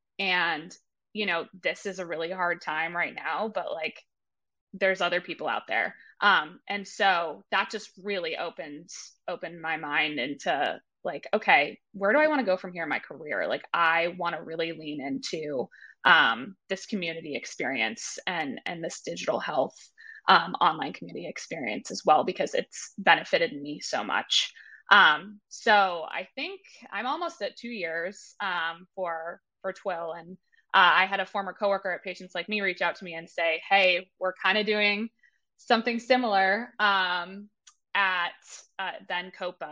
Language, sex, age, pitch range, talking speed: English, female, 20-39, 170-210 Hz, 170 wpm